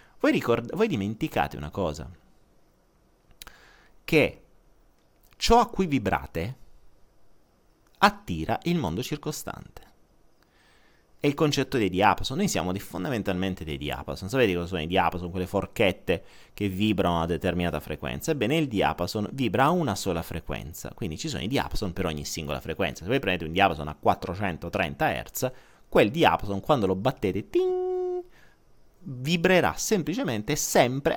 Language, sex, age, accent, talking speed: Italian, male, 30-49, native, 140 wpm